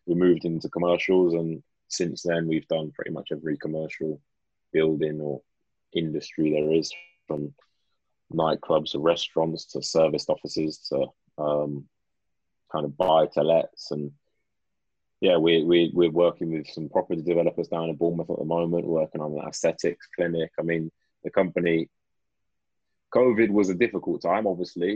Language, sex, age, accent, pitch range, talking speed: English, male, 20-39, British, 80-85 Hz, 150 wpm